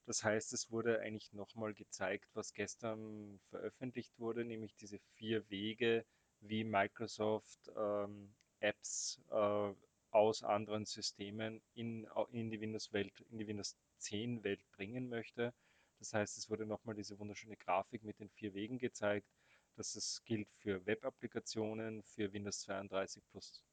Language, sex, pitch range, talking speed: German, male, 100-110 Hz, 135 wpm